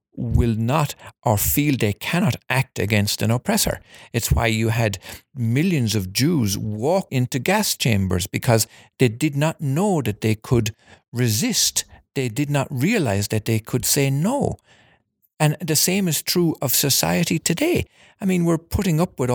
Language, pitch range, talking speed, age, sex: English, 110-150 Hz, 165 wpm, 50-69, male